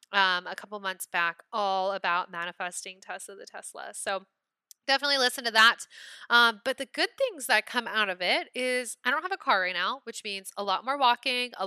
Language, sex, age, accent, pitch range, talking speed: English, female, 20-39, American, 190-255 Hz, 210 wpm